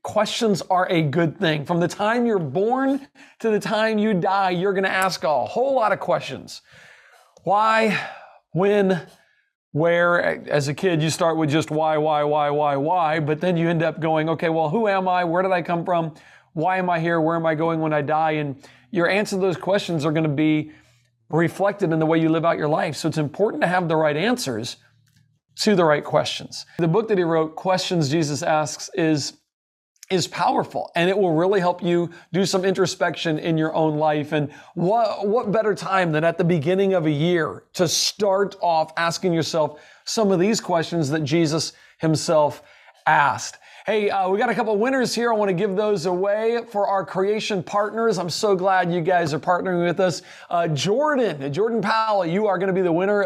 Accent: American